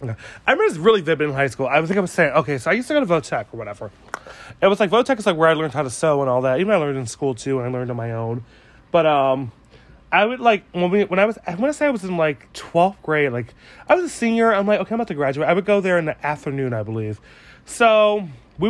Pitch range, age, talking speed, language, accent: 130-195 Hz, 20-39, 305 wpm, English, American